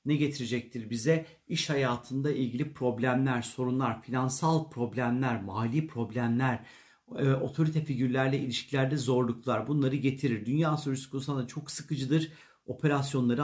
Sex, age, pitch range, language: male, 40-59, 125-145 Hz, Turkish